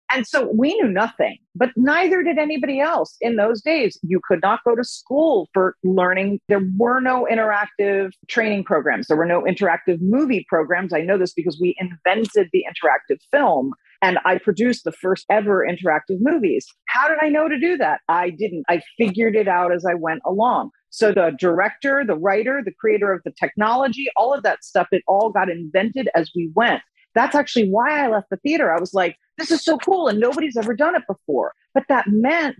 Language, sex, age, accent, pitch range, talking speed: English, female, 40-59, American, 185-255 Hz, 205 wpm